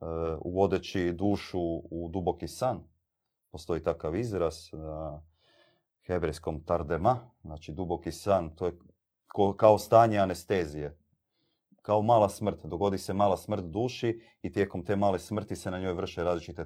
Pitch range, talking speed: 80-100 Hz, 145 wpm